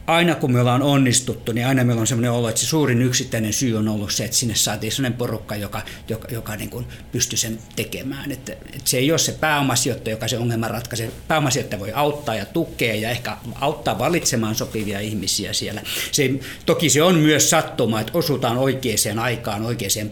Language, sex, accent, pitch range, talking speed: Finnish, male, native, 110-135 Hz, 200 wpm